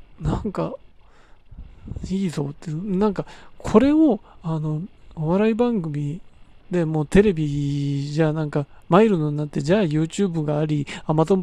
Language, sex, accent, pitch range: Japanese, male, native, 155-235 Hz